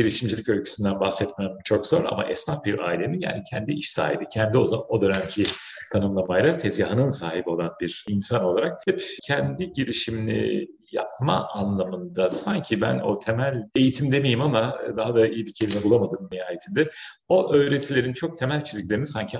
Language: Turkish